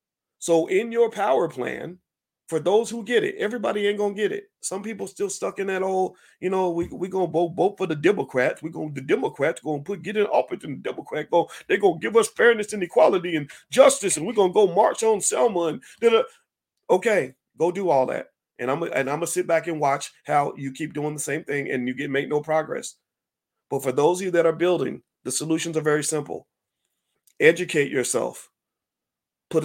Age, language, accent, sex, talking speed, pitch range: 40-59, English, American, male, 225 wpm, 150-190 Hz